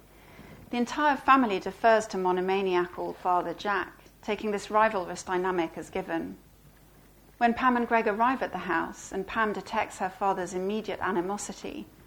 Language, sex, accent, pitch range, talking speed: English, female, British, 185-225 Hz, 145 wpm